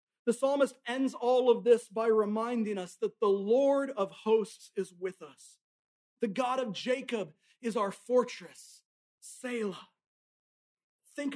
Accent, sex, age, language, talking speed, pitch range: American, male, 40-59, English, 135 wpm, 230-275 Hz